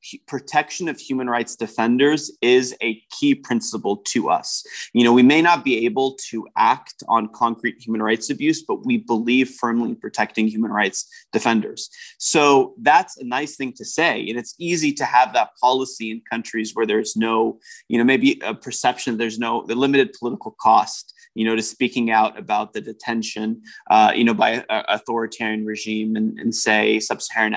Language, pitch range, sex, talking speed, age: English, 110-130 Hz, male, 180 wpm, 30-49